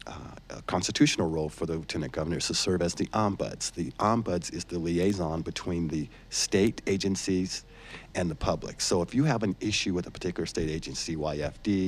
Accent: American